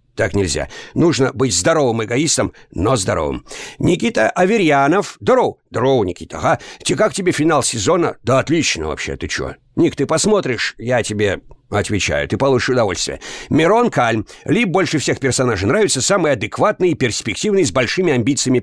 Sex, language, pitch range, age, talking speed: male, Russian, 105-150 Hz, 60-79, 150 wpm